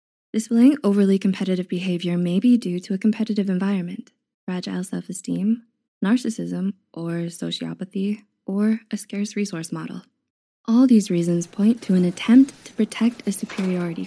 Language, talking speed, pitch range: English, 135 wpm, 185-225 Hz